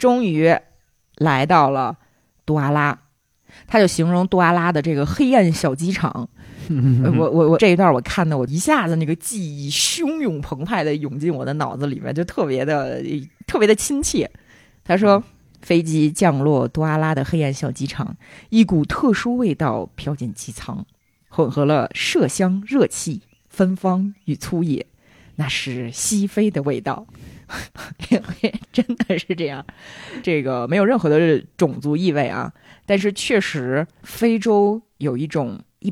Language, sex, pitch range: Chinese, female, 140-195 Hz